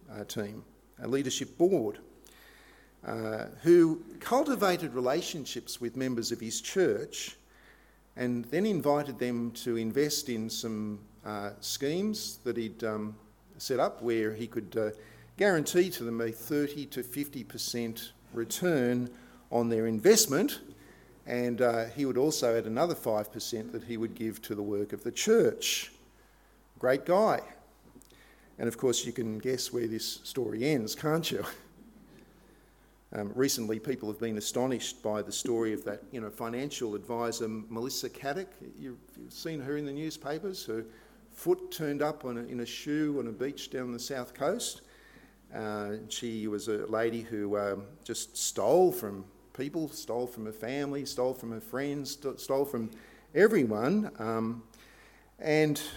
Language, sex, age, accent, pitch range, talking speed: English, male, 50-69, Australian, 110-145 Hz, 150 wpm